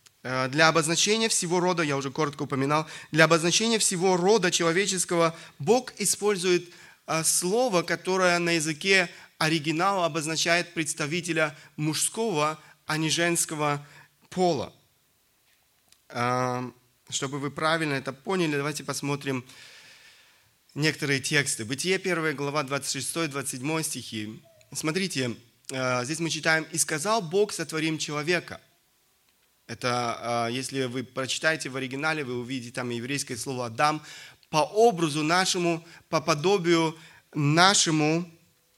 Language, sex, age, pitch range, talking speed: Russian, male, 30-49, 145-175 Hz, 105 wpm